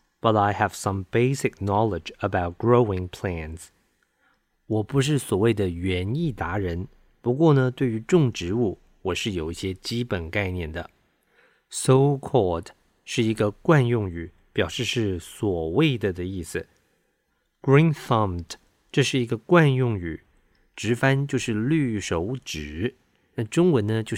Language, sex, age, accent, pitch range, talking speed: English, male, 50-69, Chinese, 95-125 Hz, 35 wpm